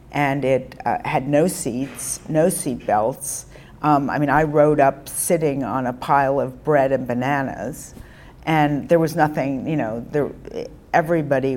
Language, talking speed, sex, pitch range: English, 160 wpm, female, 125-145 Hz